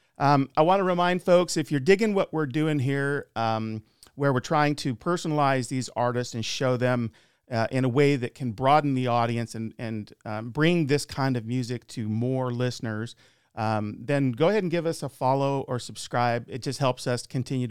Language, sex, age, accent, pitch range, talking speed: English, male, 40-59, American, 115-145 Hz, 205 wpm